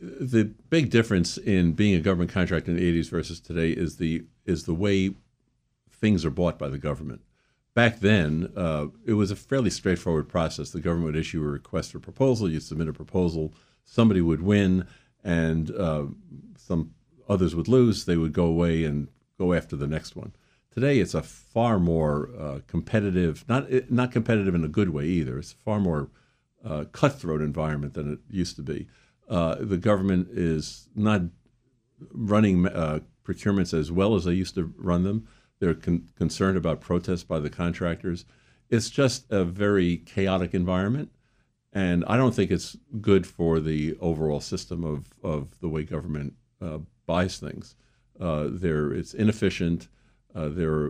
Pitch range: 80-105 Hz